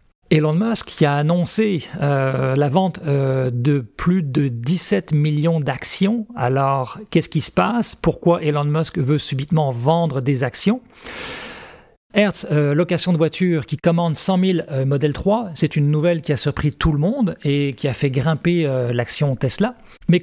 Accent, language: French, French